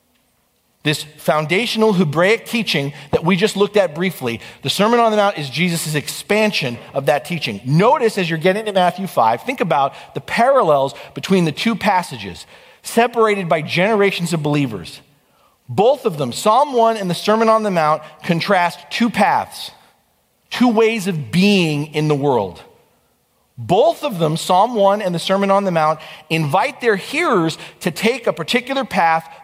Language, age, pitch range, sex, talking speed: English, 40-59, 135-190 Hz, male, 165 wpm